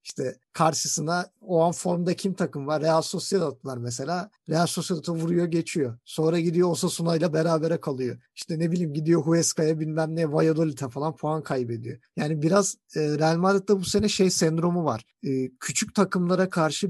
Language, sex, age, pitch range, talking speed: Turkish, male, 50-69, 155-195 Hz, 160 wpm